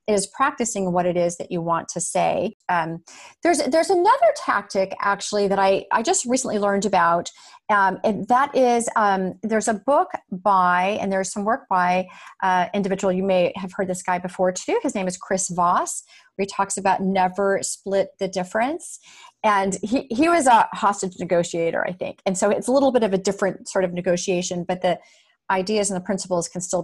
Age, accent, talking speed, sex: 40-59, American, 200 wpm, female